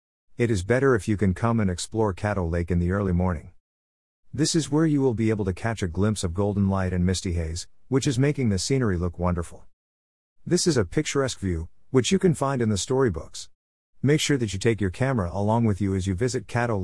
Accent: American